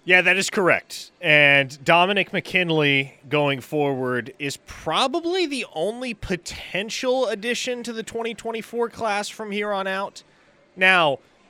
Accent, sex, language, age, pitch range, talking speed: American, male, English, 30-49, 130-185 Hz, 125 wpm